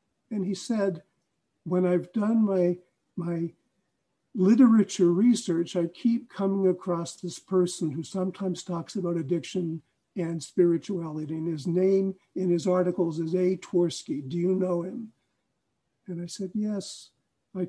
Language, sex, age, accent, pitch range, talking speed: English, male, 50-69, American, 175-200 Hz, 140 wpm